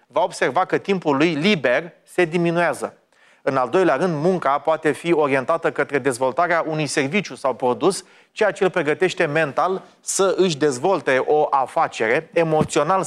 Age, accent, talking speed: 30-49, native, 150 wpm